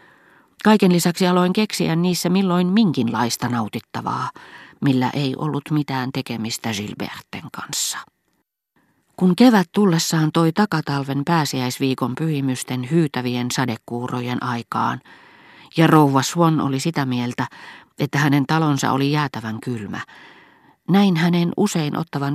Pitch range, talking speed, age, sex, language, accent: 125-165 Hz, 110 wpm, 40-59, female, Finnish, native